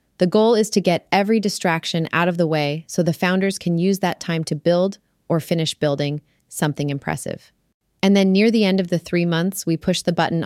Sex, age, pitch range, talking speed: female, 30-49, 160-195 Hz, 220 wpm